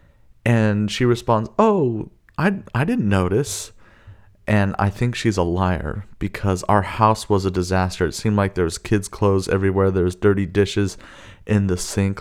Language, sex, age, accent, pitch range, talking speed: English, male, 30-49, American, 95-120 Hz, 170 wpm